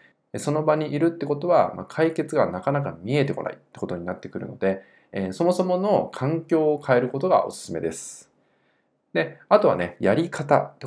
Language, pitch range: Japanese, 105-165 Hz